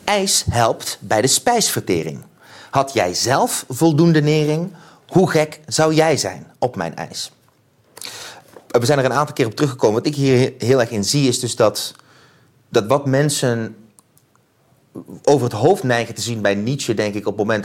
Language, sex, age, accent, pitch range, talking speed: Dutch, male, 30-49, Dutch, 110-150 Hz, 175 wpm